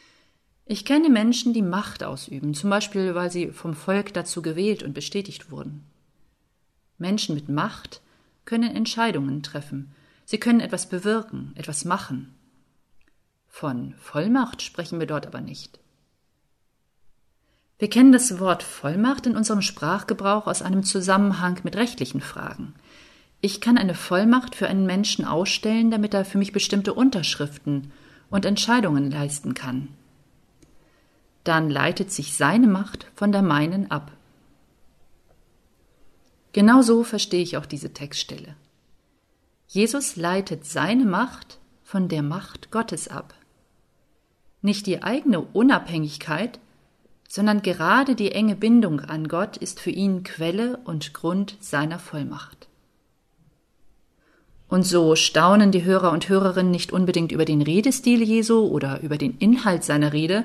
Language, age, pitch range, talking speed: German, 40-59, 155-210 Hz, 130 wpm